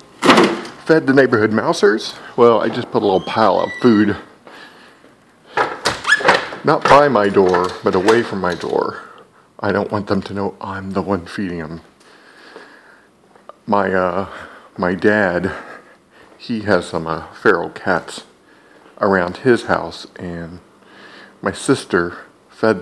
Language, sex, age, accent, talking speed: English, male, 50-69, American, 130 wpm